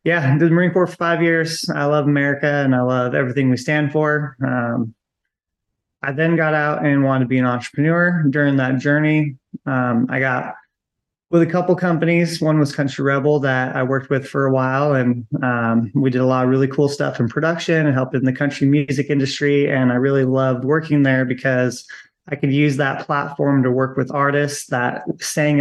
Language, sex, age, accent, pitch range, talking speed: English, male, 20-39, American, 130-150 Hz, 205 wpm